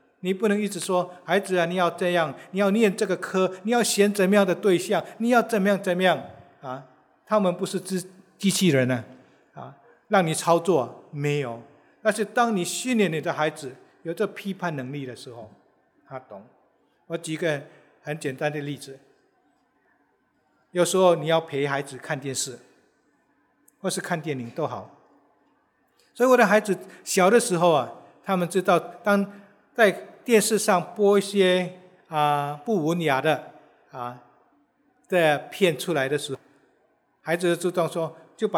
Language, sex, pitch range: English, male, 150-200 Hz